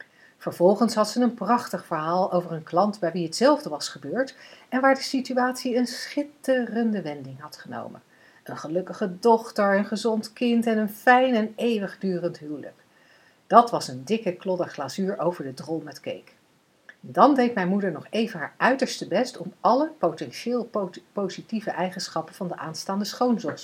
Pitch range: 165-235 Hz